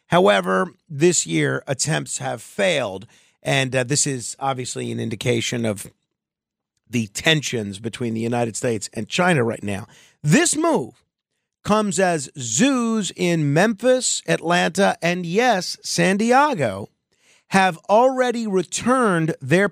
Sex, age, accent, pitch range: male, 50-69, American, 140-215 Hz